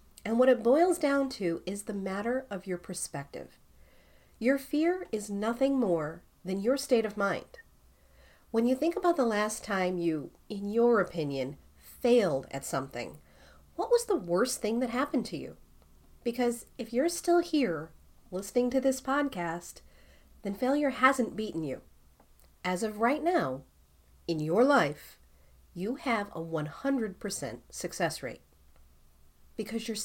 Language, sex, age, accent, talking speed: English, female, 40-59, American, 150 wpm